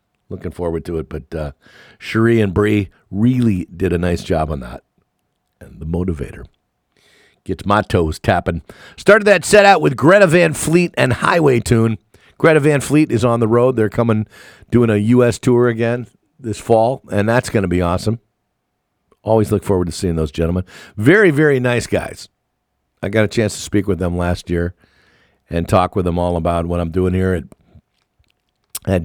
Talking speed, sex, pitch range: 185 wpm, male, 90-120 Hz